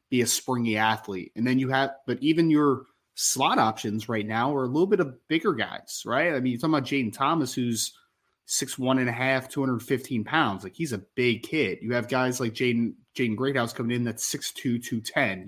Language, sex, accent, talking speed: English, male, American, 215 wpm